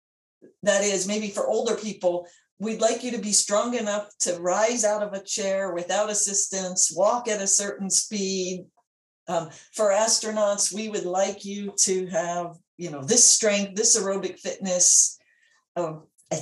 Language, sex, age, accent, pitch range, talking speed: English, female, 50-69, American, 180-210 Hz, 155 wpm